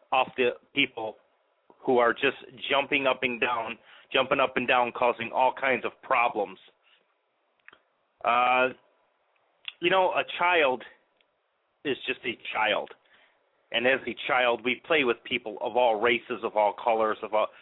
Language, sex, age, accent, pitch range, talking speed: English, male, 40-59, American, 125-165 Hz, 150 wpm